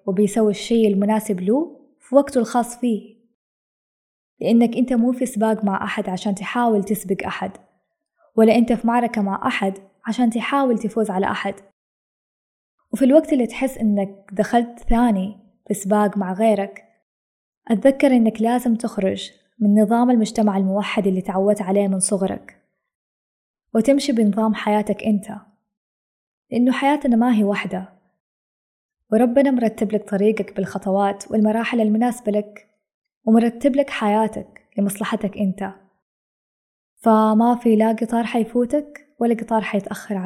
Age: 20-39